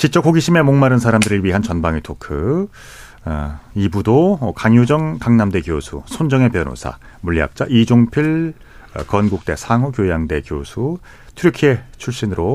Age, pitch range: 40-59, 85-125 Hz